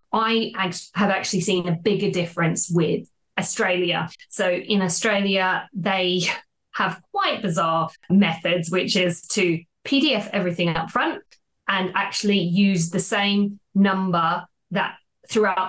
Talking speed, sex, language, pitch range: 120 wpm, female, English, 180-225 Hz